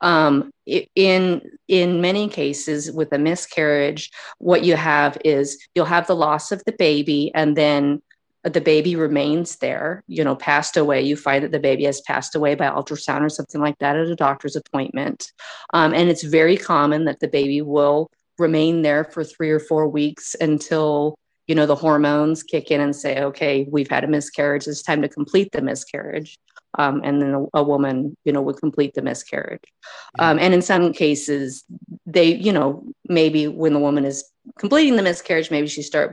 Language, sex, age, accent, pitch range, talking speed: English, female, 30-49, American, 145-165 Hz, 190 wpm